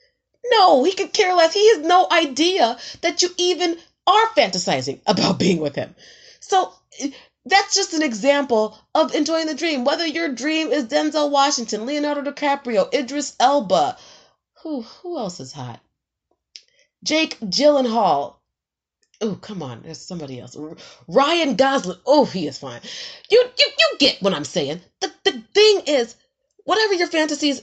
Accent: American